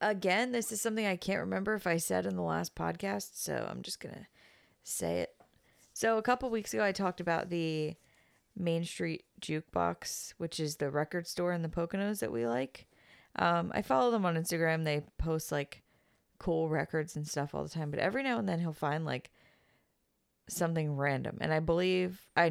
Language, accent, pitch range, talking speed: English, American, 150-175 Hz, 195 wpm